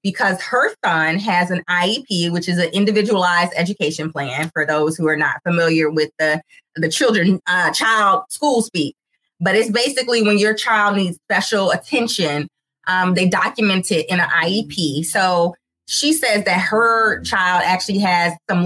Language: English